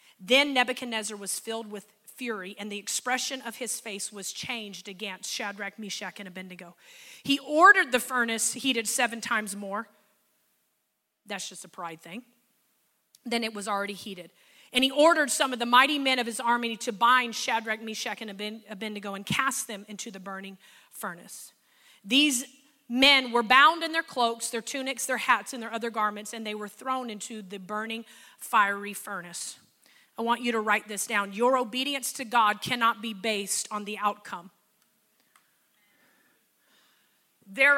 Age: 30-49